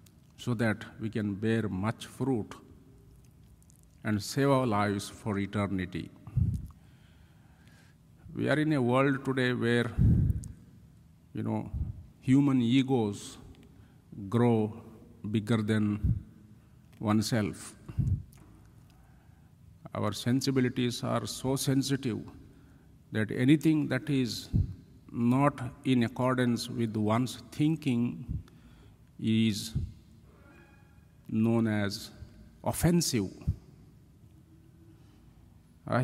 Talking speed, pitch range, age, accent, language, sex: 80 wpm, 105-130 Hz, 50-69, Indian, English, male